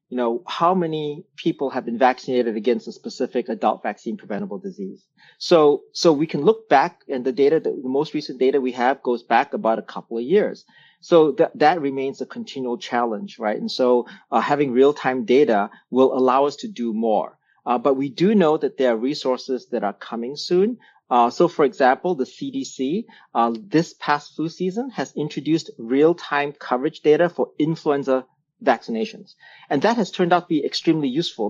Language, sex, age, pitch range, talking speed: English, male, 40-59, 125-165 Hz, 185 wpm